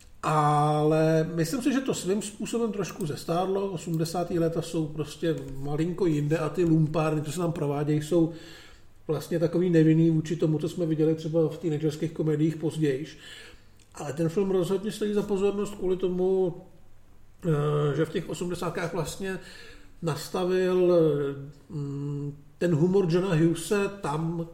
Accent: native